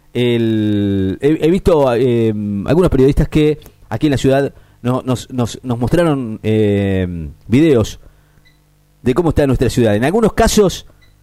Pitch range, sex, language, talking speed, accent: 105-150 Hz, male, Spanish, 130 wpm, Argentinian